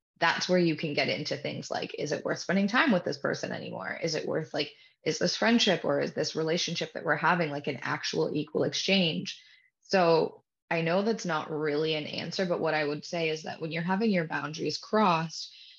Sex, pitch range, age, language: female, 150-175 Hz, 20-39, English